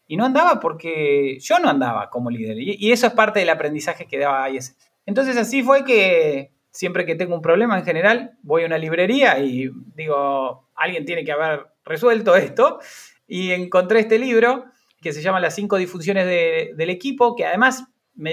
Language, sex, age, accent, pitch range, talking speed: Spanish, male, 20-39, Argentinian, 175-245 Hz, 190 wpm